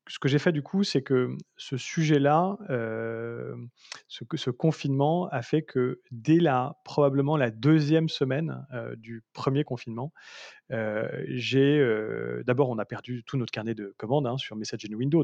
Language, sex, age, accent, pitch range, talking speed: French, male, 30-49, French, 115-140 Hz, 175 wpm